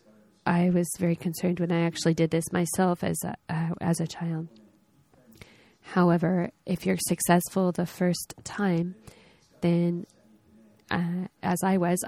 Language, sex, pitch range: Japanese, female, 165-180 Hz